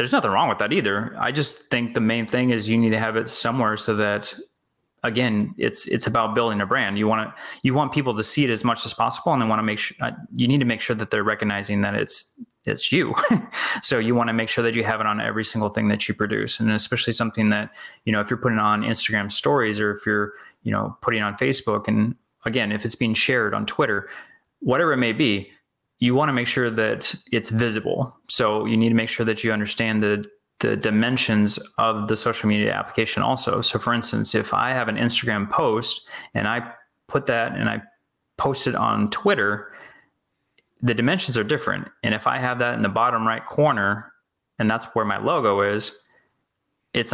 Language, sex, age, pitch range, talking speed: English, male, 20-39, 105-125 Hz, 225 wpm